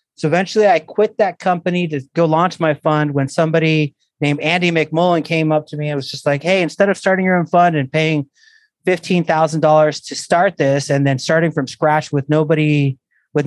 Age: 30-49